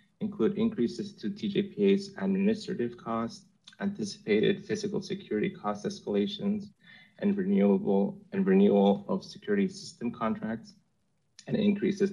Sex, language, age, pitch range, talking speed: male, English, 30-49, 140-200 Hz, 105 wpm